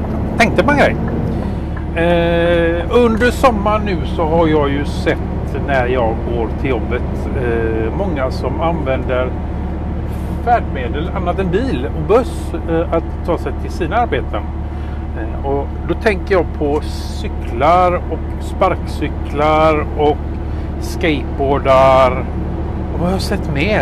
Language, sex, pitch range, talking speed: Swedish, male, 75-90 Hz, 130 wpm